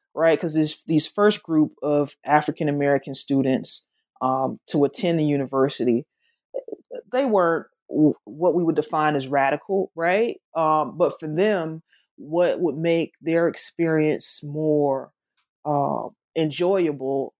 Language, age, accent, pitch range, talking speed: English, 20-39, American, 140-165 Hz, 120 wpm